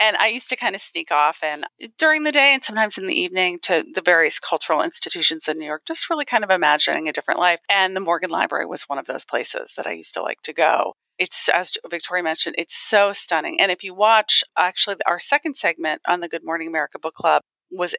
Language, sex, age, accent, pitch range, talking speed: English, female, 40-59, American, 165-220 Hz, 240 wpm